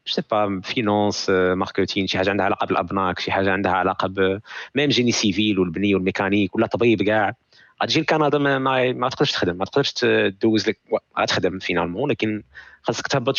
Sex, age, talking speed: male, 20-39, 160 wpm